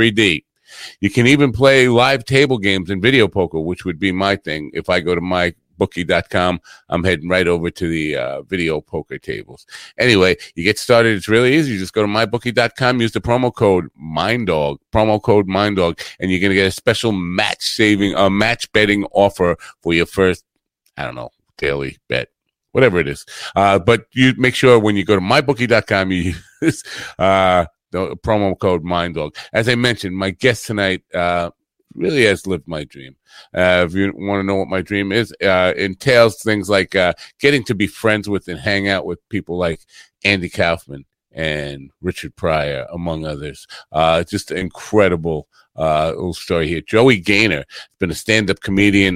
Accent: American